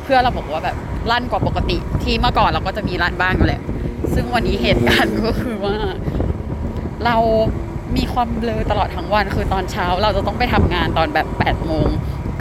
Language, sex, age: Thai, female, 20-39